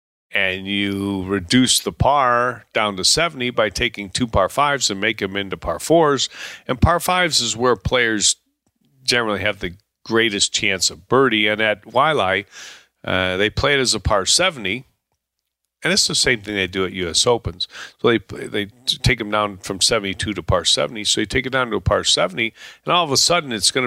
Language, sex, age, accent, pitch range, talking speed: English, male, 40-59, American, 100-125 Hz, 200 wpm